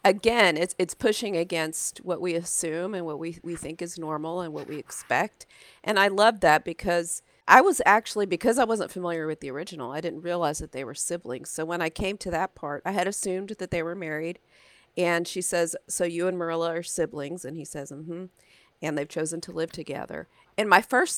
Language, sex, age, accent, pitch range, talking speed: English, female, 40-59, American, 160-200 Hz, 220 wpm